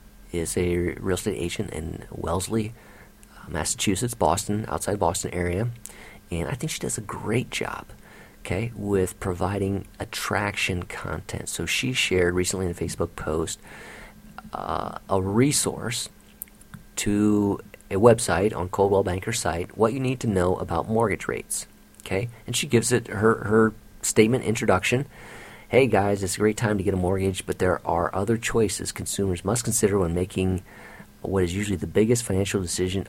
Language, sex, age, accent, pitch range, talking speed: English, male, 40-59, American, 90-115 Hz, 160 wpm